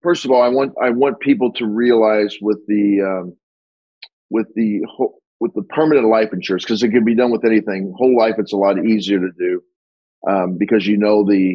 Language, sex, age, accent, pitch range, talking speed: English, male, 40-59, American, 105-135 Hz, 210 wpm